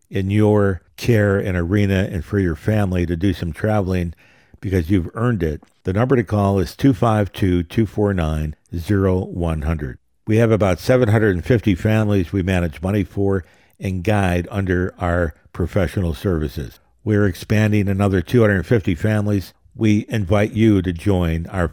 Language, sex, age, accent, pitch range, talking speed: English, male, 60-79, American, 90-110 Hz, 135 wpm